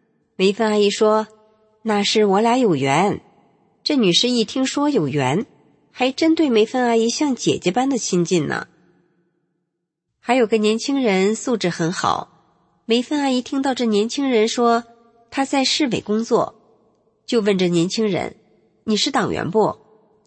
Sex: female